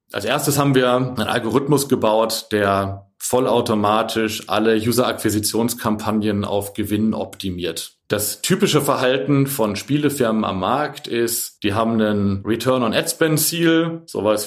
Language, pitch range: German, 110-135 Hz